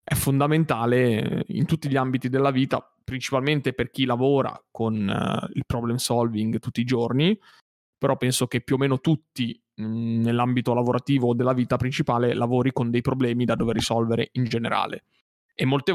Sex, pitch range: male, 120-145 Hz